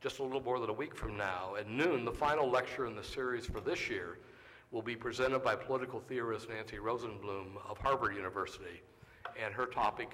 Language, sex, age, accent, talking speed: English, male, 60-79, American, 200 wpm